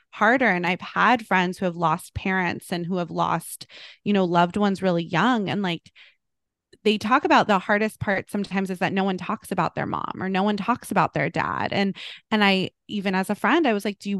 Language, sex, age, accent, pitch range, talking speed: English, female, 20-39, American, 180-225 Hz, 235 wpm